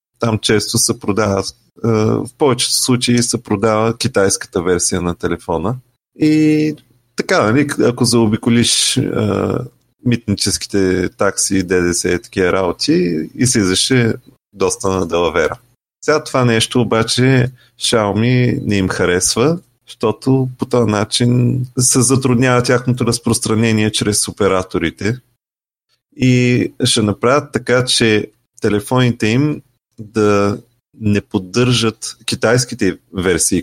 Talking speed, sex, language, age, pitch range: 105 wpm, male, Bulgarian, 30-49, 100-125 Hz